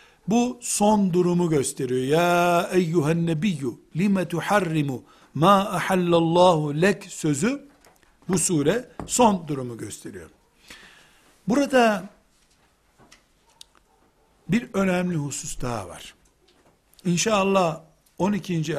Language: Turkish